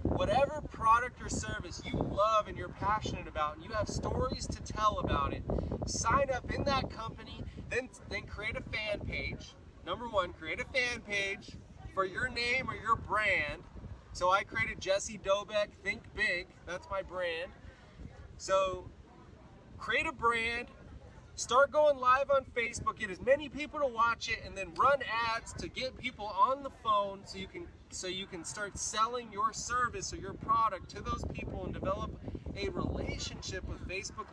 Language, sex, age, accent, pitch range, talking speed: Italian, male, 30-49, American, 195-265 Hz, 175 wpm